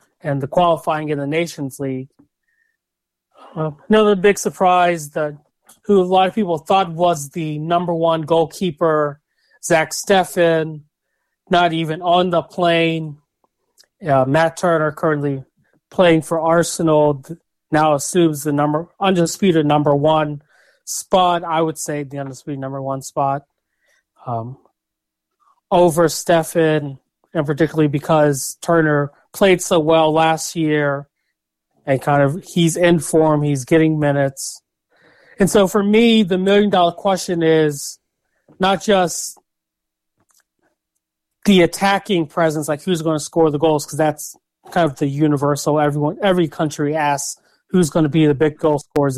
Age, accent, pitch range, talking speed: 30-49, American, 145-175 Hz, 135 wpm